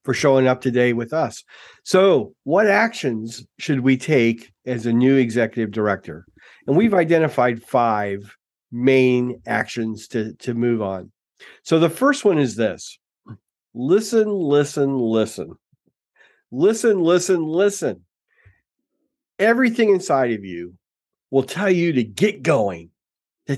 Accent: American